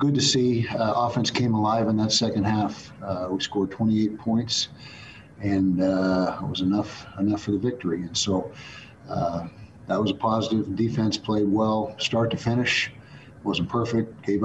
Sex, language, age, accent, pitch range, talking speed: male, English, 50-69, American, 95-115 Hz, 170 wpm